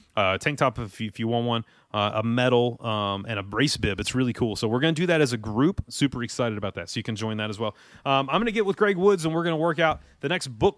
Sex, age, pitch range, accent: male, 30-49, 115-155 Hz, American